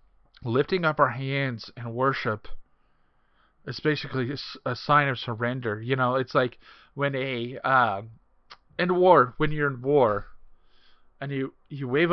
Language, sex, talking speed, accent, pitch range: English, male, 145 wpm, American, 120-150 Hz